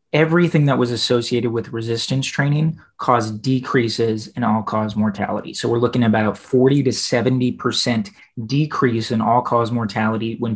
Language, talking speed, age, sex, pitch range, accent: English, 155 wpm, 30-49, male, 110-135 Hz, American